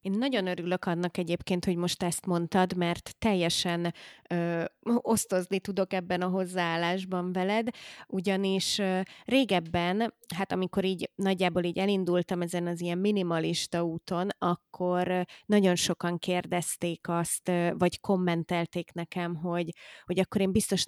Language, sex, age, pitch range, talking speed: Hungarian, female, 20-39, 175-190 Hz, 120 wpm